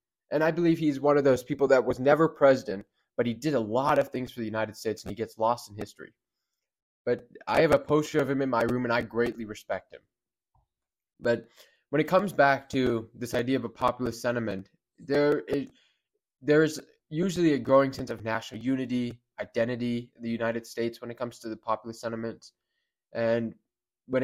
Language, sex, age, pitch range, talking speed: English, male, 20-39, 110-135 Hz, 200 wpm